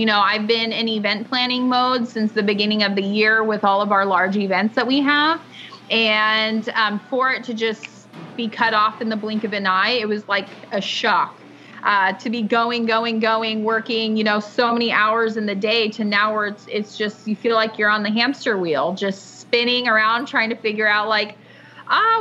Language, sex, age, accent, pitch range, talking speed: English, female, 20-39, American, 210-235 Hz, 220 wpm